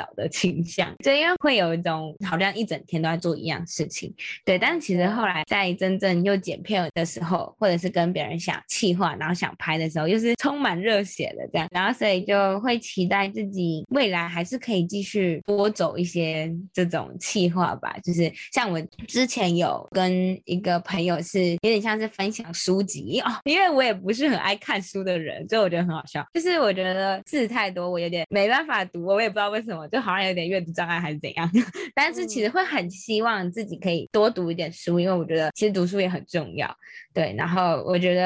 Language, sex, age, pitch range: Chinese, female, 20-39, 170-205 Hz